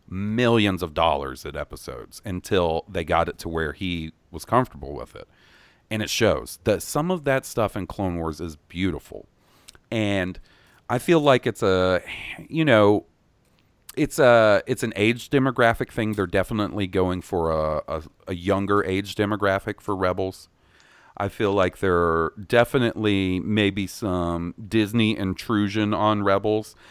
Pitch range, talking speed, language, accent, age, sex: 85-105 Hz, 150 wpm, English, American, 40-59, male